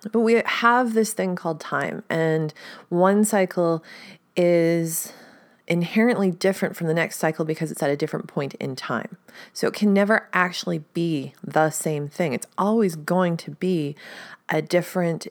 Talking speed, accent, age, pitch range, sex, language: 160 wpm, American, 30-49, 150-195 Hz, female, English